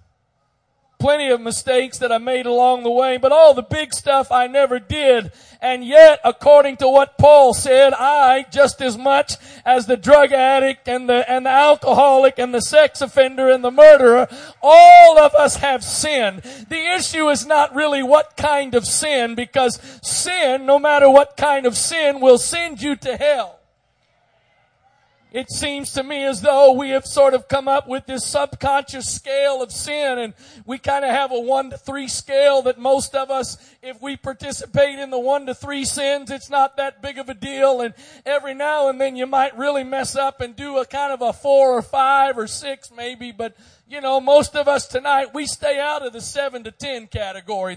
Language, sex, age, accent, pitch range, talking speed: English, male, 40-59, American, 255-285 Hz, 190 wpm